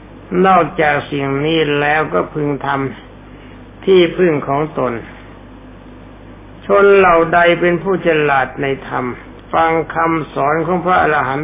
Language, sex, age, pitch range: Thai, male, 60-79, 130-170 Hz